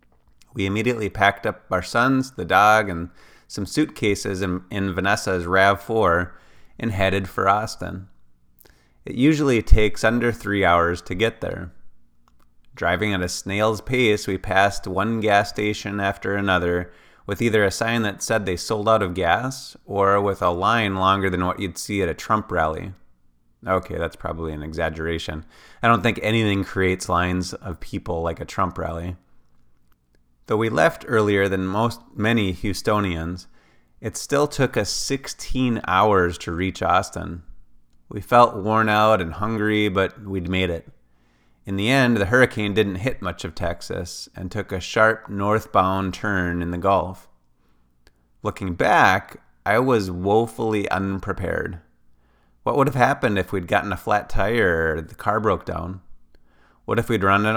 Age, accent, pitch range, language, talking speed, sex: 30-49, American, 85-105 Hz, English, 160 wpm, male